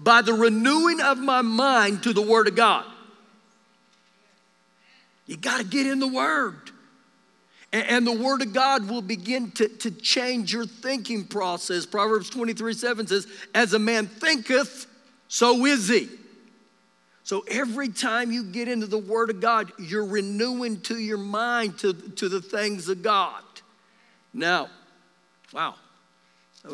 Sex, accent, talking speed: male, American, 150 wpm